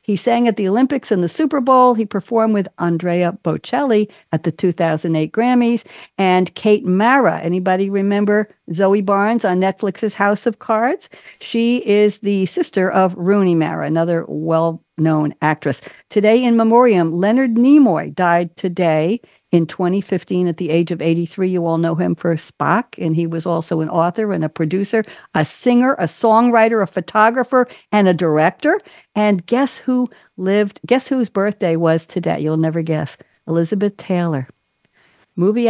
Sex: female